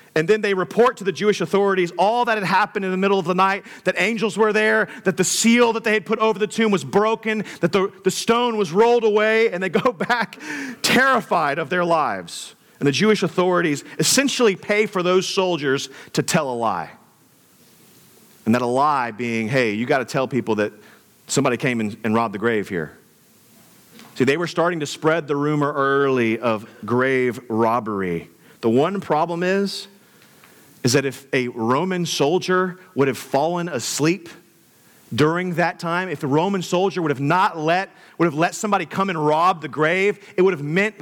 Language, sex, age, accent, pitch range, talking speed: English, male, 40-59, American, 140-205 Hz, 195 wpm